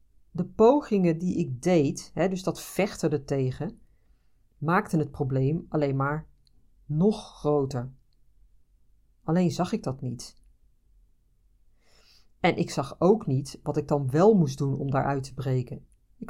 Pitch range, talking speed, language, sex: 125-175 Hz, 135 wpm, Dutch, female